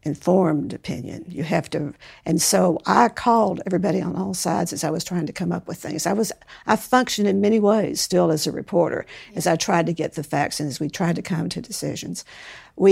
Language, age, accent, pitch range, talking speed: English, 60-79, American, 160-190 Hz, 230 wpm